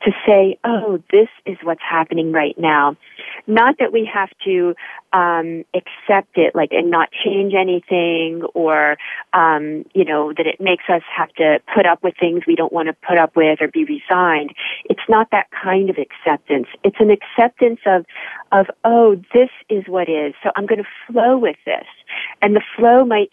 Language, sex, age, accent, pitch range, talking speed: English, female, 40-59, American, 170-210 Hz, 190 wpm